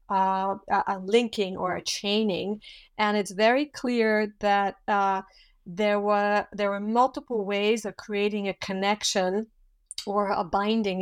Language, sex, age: English, female, 50-69